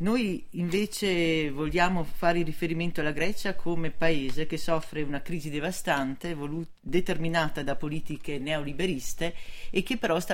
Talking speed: 135 wpm